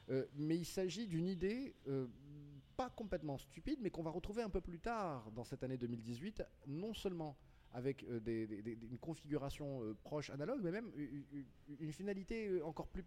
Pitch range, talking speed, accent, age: 110-165 Hz, 190 wpm, French, 30-49